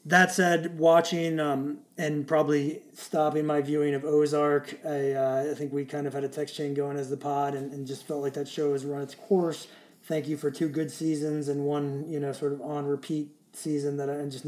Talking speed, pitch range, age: 230 wpm, 140-155 Hz, 30-49